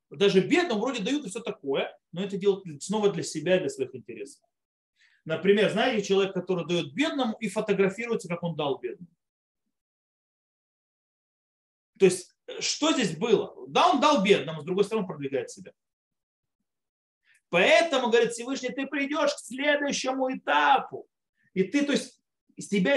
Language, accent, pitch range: Russian, native, 180-255 Hz